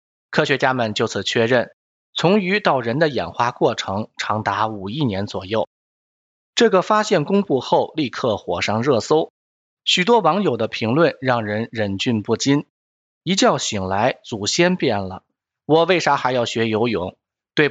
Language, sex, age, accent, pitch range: Chinese, male, 20-39, native, 105-160 Hz